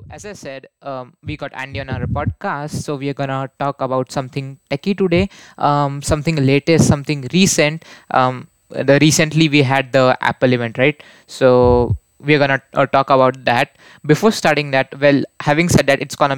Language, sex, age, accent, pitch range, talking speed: English, male, 20-39, Indian, 130-150 Hz, 180 wpm